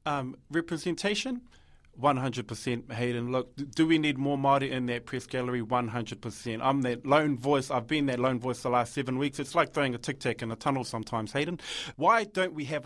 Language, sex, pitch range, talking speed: English, male, 130-165 Hz, 195 wpm